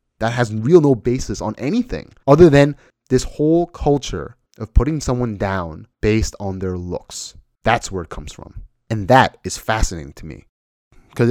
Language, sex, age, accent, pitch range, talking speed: English, male, 30-49, American, 95-125 Hz, 170 wpm